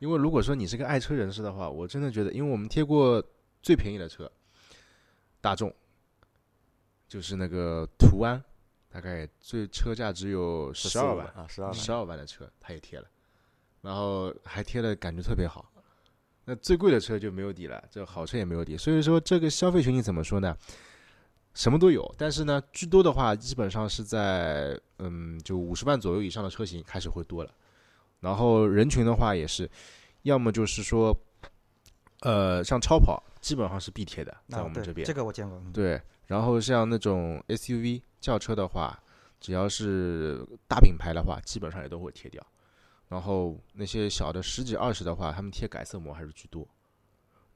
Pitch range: 90-115 Hz